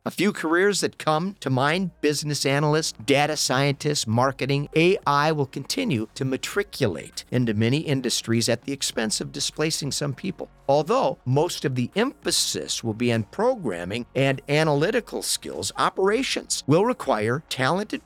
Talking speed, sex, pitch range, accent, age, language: 145 wpm, male, 115-150 Hz, American, 50-69, English